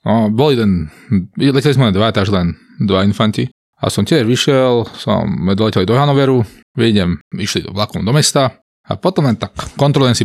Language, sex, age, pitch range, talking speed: Slovak, male, 20-39, 105-140 Hz, 180 wpm